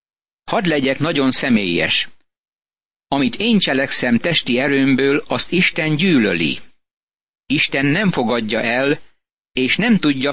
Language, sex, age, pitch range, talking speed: Hungarian, male, 60-79, 130-150 Hz, 110 wpm